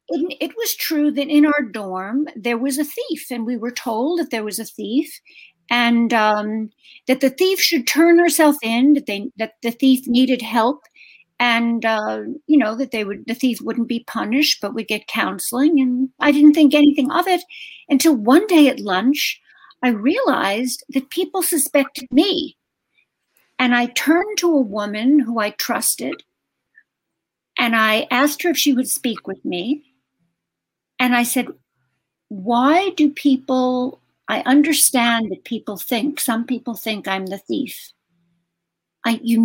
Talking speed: 165 wpm